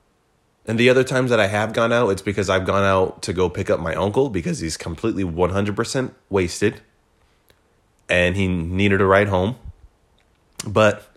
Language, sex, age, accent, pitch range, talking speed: English, male, 20-39, American, 95-120 Hz, 170 wpm